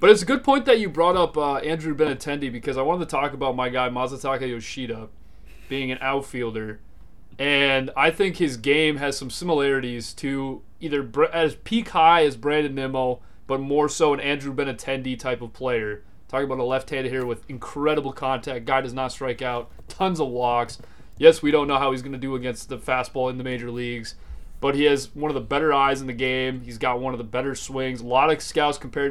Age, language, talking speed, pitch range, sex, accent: 30-49, English, 215 wpm, 130-155 Hz, male, American